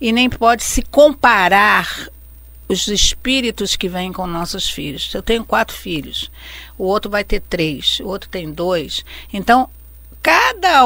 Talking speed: 150 wpm